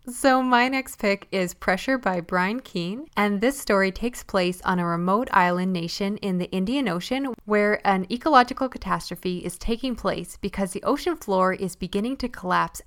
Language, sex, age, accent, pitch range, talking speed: English, female, 10-29, American, 180-230 Hz, 175 wpm